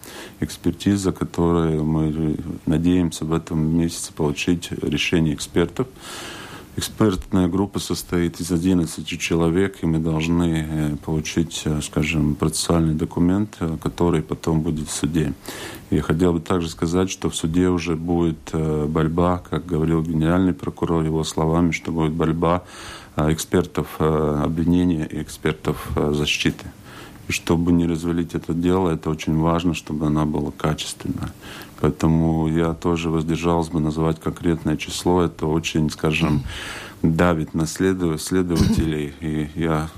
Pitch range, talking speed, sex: 80-85 Hz, 125 wpm, male